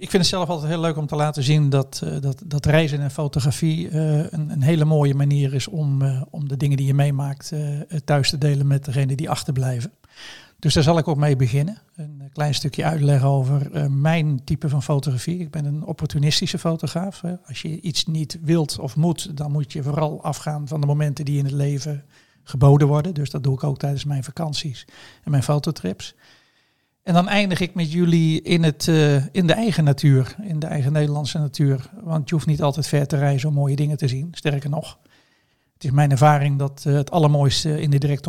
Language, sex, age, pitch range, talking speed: Dutch, male, 50-69, 140-155 Hz, 210 wpm